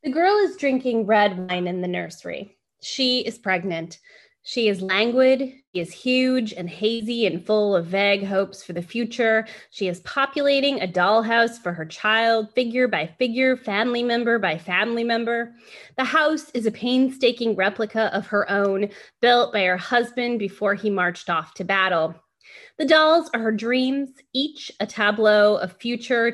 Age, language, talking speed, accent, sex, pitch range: 20-39, English, 165 wpm, American, female, 190-250 Hz